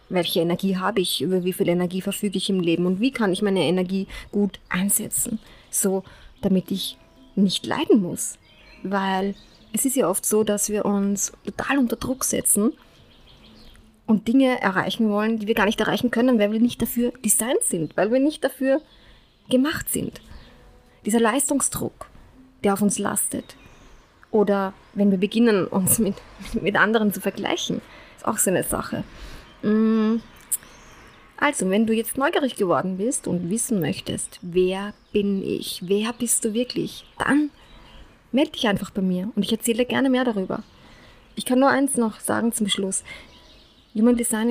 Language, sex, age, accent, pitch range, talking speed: German, female, 20-39, German, 195-235 Hz, 165 wpm